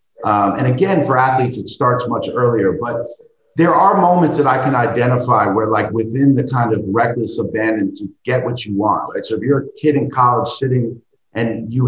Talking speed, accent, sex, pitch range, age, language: 205 wpm, American, male, 115-145 Hz, 50-69, English